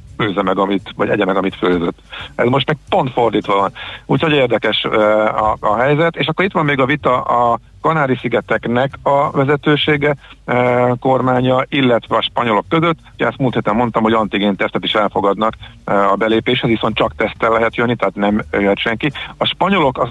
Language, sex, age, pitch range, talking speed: Hungarian, male, 50-69, 105-135 Hz, 175 wpm